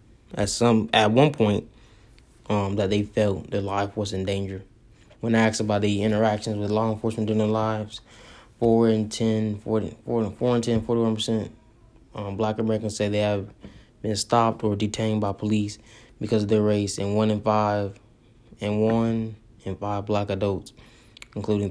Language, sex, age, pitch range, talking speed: English, male, 20-39, 105-115 Hz, 165 wpm